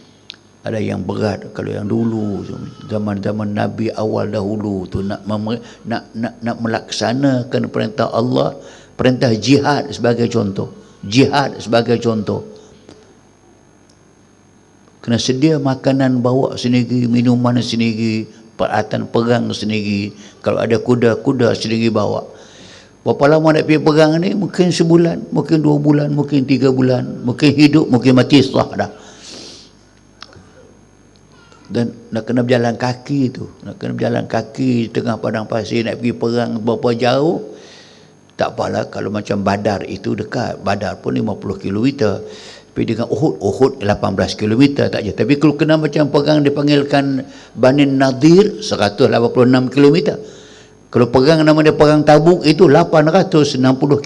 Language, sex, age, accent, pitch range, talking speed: Malayalam, male, 60-79, Indonesian, 110-145 Hz, 130 wpm